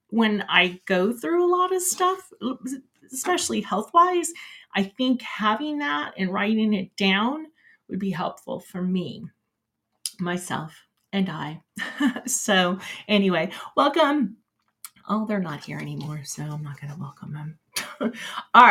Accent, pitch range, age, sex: American, 190-275 Hz, 30-49, female